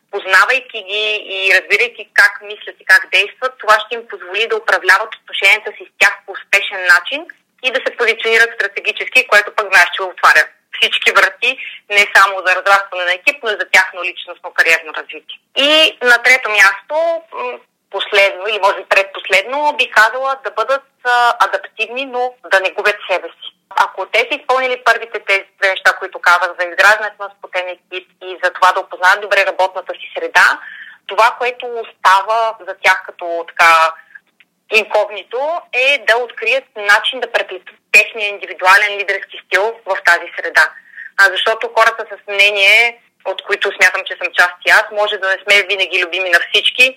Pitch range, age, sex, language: 185-225 Hz, 30-49, female, Bulgarian